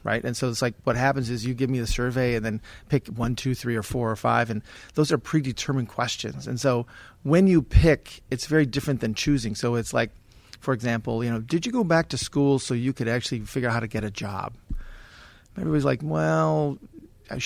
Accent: American